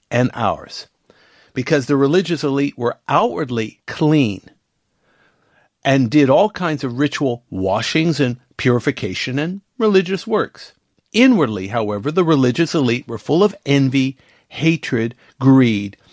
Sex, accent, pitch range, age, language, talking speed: male, American, 125-160 Hz, 50-69, English, 120 wpm